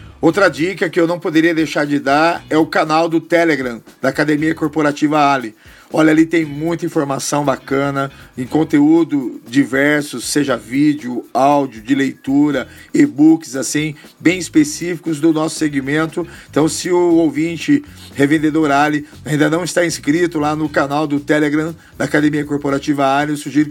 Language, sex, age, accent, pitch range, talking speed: Portuguese, male, 50-69, Brazilian, 145-175 Hz, 150 wpm